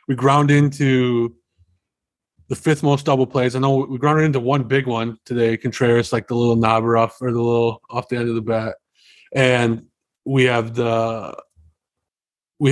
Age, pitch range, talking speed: 30-49, 115-135 Hz, 175 wpm